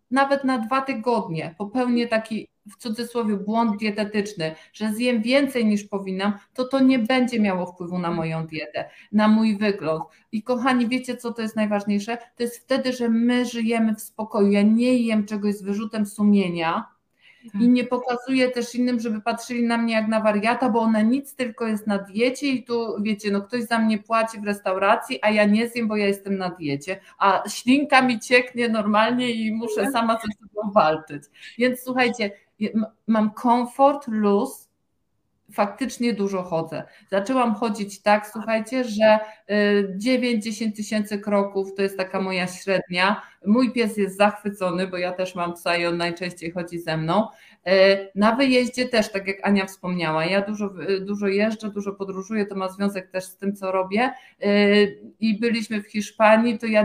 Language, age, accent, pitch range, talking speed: Polish, 50-69, native, 195-235 Hz, 170 wpm